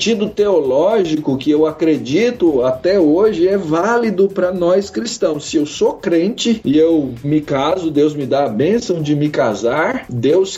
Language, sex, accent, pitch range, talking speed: Portuguese, male, Brazilian, 130-205 Hz, 165 wpm